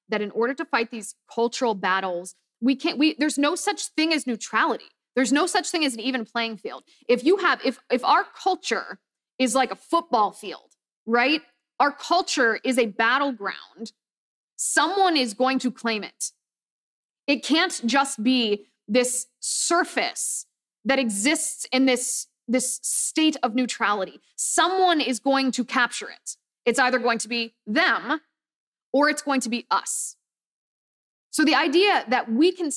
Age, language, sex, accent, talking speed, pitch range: 20-39, English, female, American, 160 wpm, 240-335 Hz